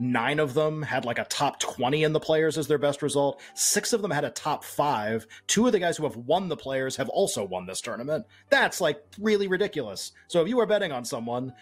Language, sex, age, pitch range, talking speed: English, male, 30-49, 115-150 Hz, 245 wpm